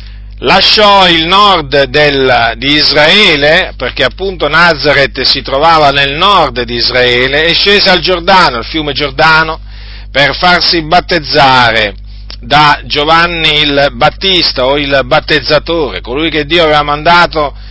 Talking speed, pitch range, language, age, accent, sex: 120 wpm, 125-175 Hz, Italian, 50-69, native, male